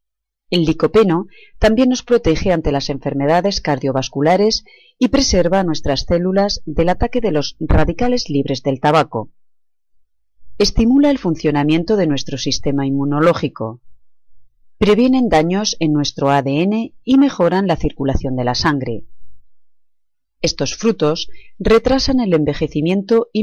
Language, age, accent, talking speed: Spanish, 30-49, Spanish, 120 wpm